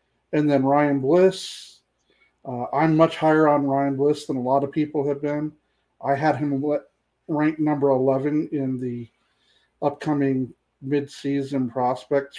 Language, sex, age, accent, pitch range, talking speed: English, male, 40-59, American, 130-145 Hz, 140 wpm